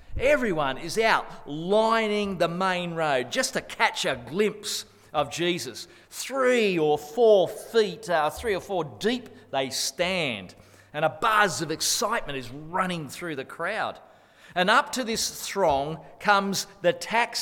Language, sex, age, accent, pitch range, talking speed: English, male, 40-59, Australian, 155-225 Hz, 150 wpm